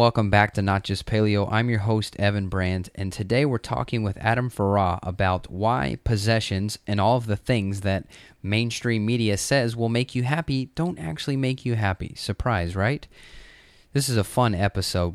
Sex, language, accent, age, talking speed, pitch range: male, English, American, 20-39, 180 wpm, 95-115 Hz